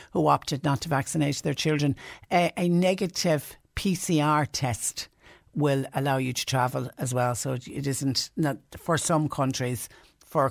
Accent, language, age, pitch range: Irish, English, 60-79, 130-155 Hz